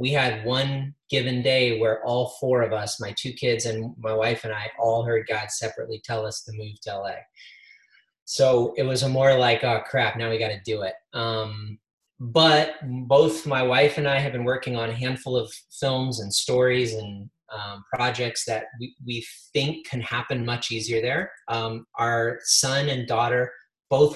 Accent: American